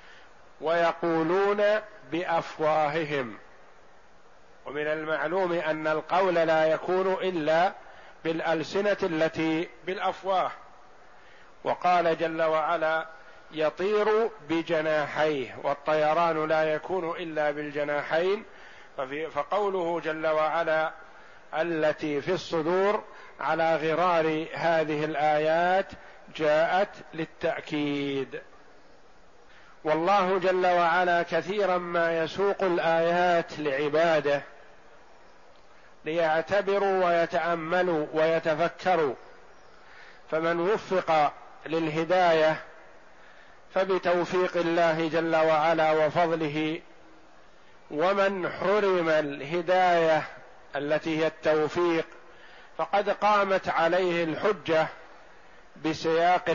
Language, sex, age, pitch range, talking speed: Arabic, male, 50-69, 155-180 Hz, 70 wpm